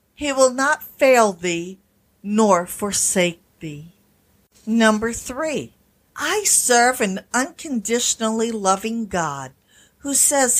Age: 50-69